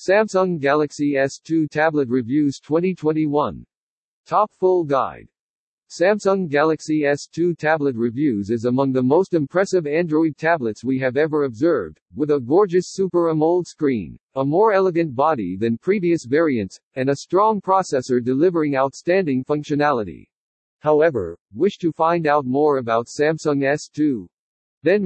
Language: English